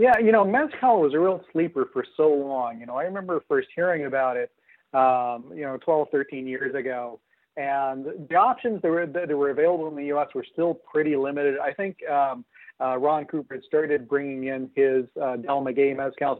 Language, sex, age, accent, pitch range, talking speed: English, male, 40-59, American, 135-165 Hz, 205 wpm